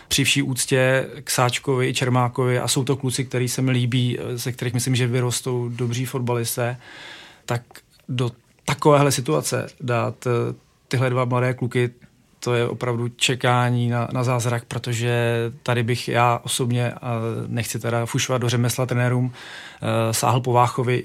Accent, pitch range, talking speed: native, 120-130 Hz, 150 wpm